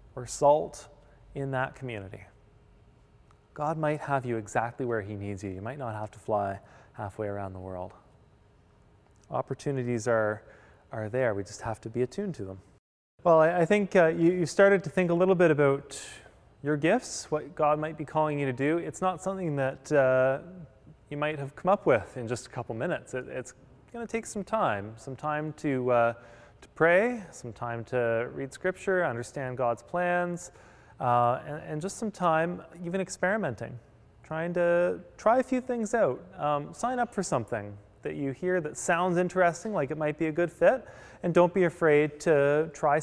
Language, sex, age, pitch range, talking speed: English, male, 20-39, 120-175 Hz, 185 wpm